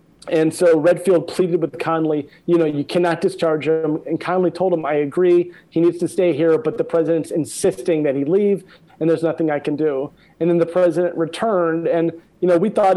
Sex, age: male, 40-59